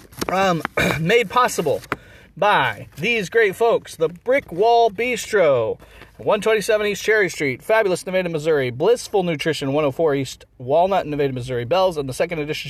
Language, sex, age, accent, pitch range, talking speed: English, male, 40-59, American, 150-195 Hz, 140 wpm